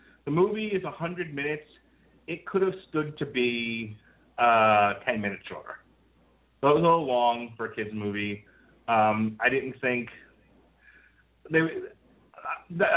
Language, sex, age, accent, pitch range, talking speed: English, male, 30-49, American, 105-125 Hz, 145 wpm